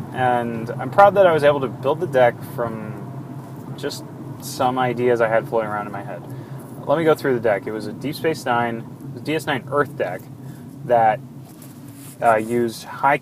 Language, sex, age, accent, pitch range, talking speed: English, male, 20-39, American, 115-135 Hz, 185 wpm